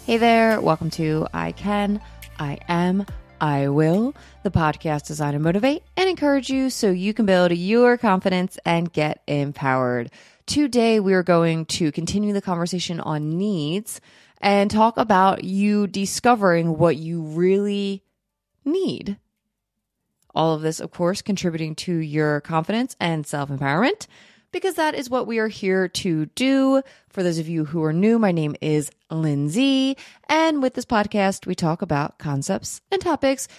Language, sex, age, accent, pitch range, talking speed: English, female, 20-39, American, 160-220 Hz, 155 wpm